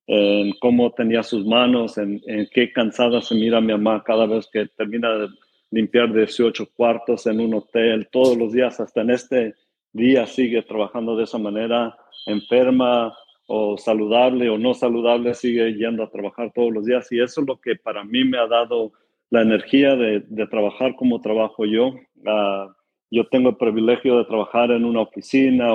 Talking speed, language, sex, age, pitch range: 180 wpm, Spanish, male, 50-69, 110-125 Hz